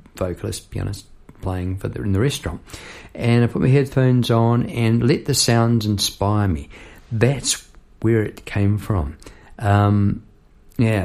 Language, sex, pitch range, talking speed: English, male, 95-120 Hz, 150 wpm